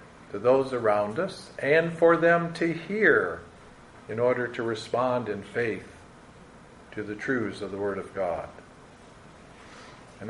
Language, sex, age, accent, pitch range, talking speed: English, male, 50-69, American, 110-165 Hz, 140 wpm